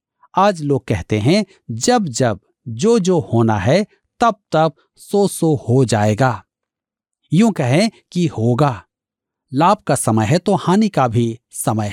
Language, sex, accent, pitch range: Hindi, male, native, 115-185 Hz